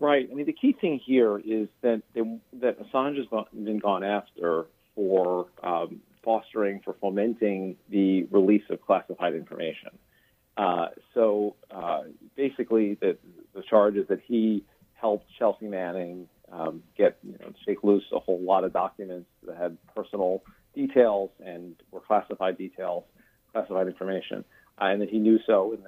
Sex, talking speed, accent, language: male, 155 wpm, American, English